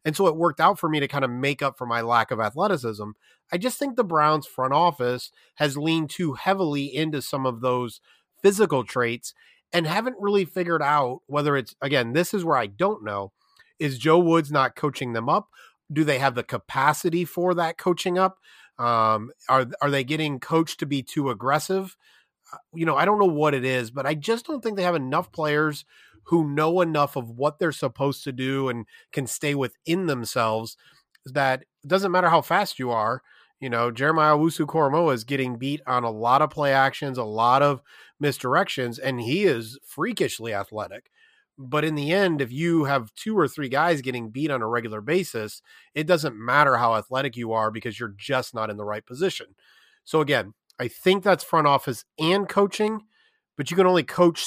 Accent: American